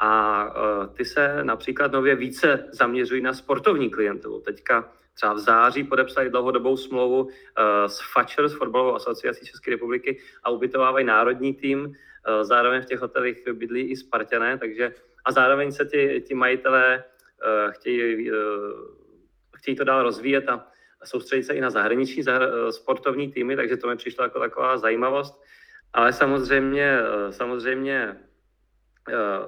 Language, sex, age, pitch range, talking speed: Czech, male, 30-49, 115-140 Hz, 150 wpm